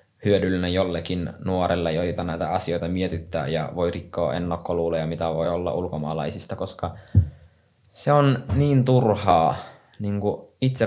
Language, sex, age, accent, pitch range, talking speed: Finnish, male, 20-39, native, 90-110 Hz, 120 wpm